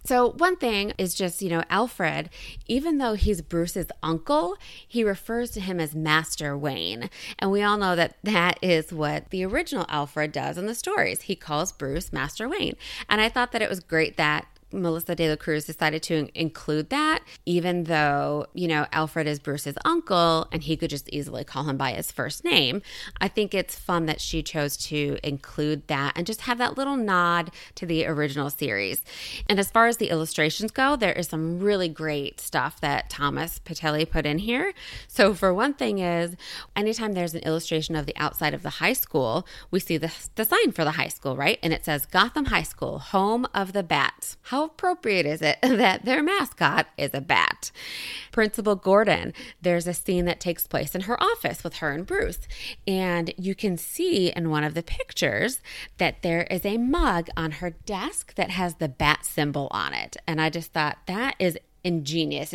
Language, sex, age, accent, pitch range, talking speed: English, female, 20-39, American, 160-220 Hz, 200 wpm